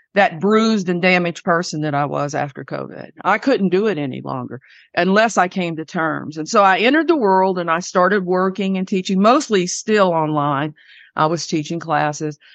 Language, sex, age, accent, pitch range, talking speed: English, female, 50-69, American, 165-215 Hz, 190 wpm